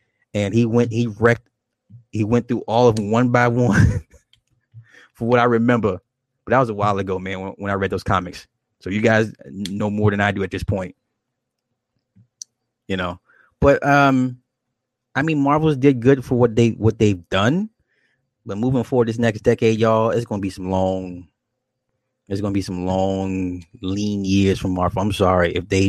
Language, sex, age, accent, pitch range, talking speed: English, male, 20-39, American, 100-125 Hz, 195 wpm